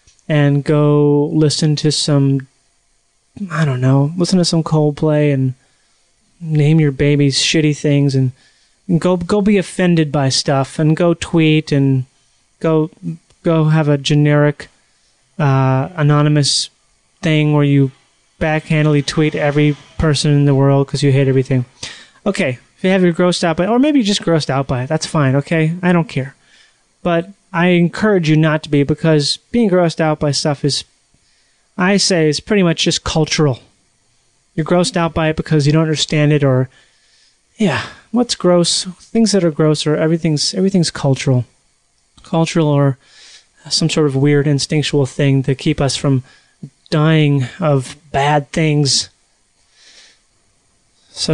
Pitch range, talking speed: 140-165 Hz, 155 wpm